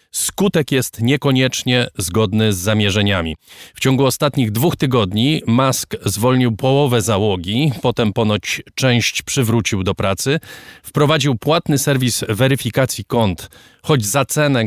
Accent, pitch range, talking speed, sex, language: native, 100-130 Hz, 120 wpm, male, Polish